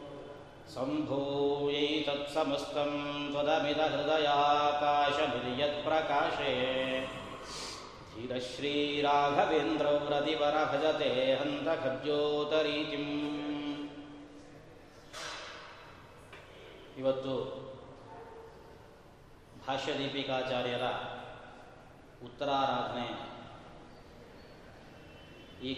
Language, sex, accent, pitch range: Kannada, male, native, 135-150 Hz